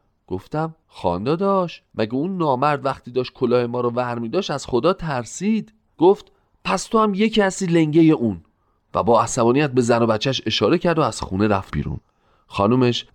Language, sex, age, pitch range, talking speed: Persian, male, 40-59, 105-155 Hz, 175 wpm